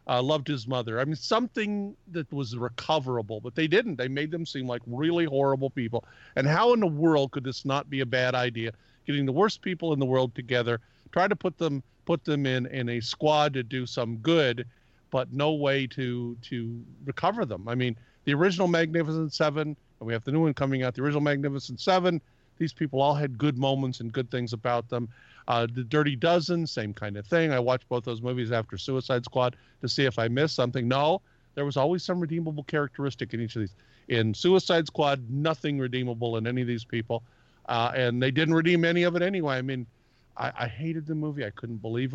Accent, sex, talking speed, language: American, male, 220 wpm, English